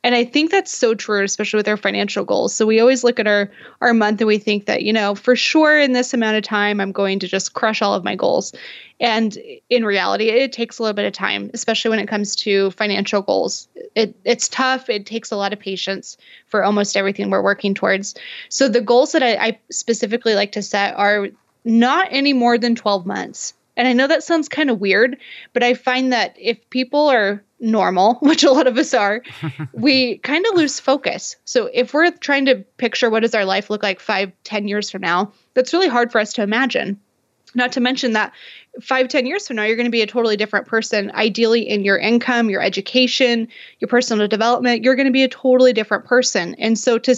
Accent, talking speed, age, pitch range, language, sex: American, 225 wpm, 20-39, 205-250 Hz, English, female